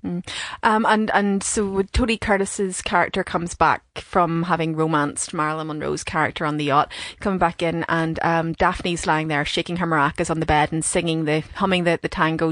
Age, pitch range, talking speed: 30-49, 185-235 Hz, 190 wpm